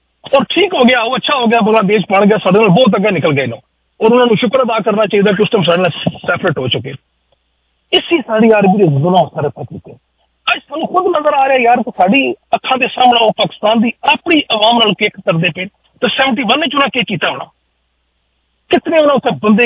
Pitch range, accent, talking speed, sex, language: 165-235 Hz, Indian, 40 wpm, male, English